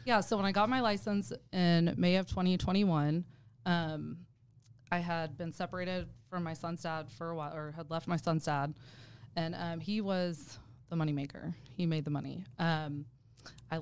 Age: 20-39